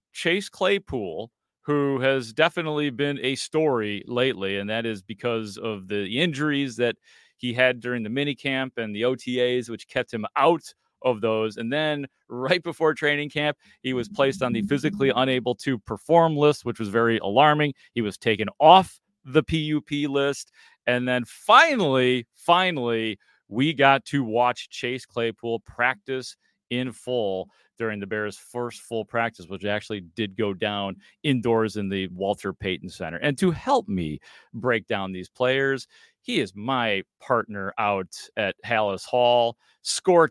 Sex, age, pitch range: male, 30-49, 110-140 Hz